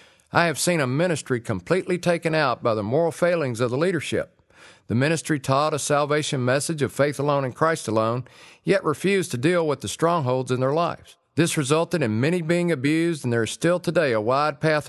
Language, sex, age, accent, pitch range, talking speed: English, male, 50-69, American, 120-165 Hz, 205 wpm